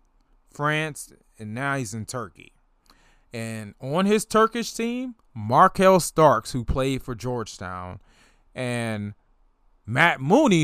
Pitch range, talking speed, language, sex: 110-155 Hz, 115 wpm, English, male